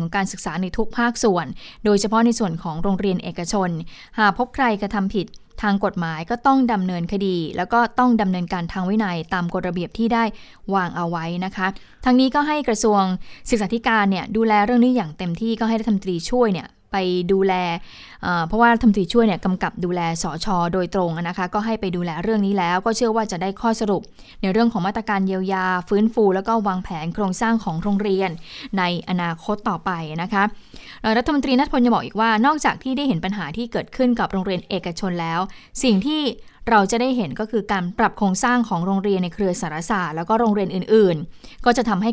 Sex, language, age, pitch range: female, Thai, 20-39, 185-225 Hz